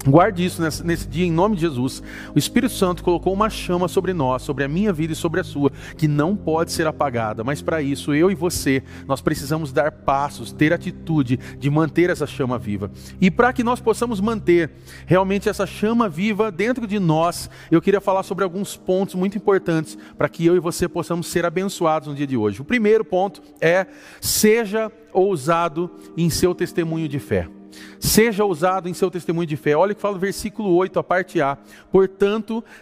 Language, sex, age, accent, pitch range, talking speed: Portuguese, male, 40-59, Brazilian, 155-205 Hz, 200 wpm